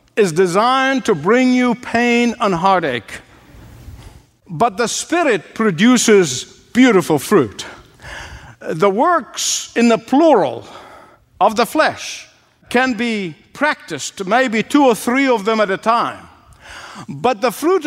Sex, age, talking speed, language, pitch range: male, 60-79, 125 wpm, English, 210-275 Hz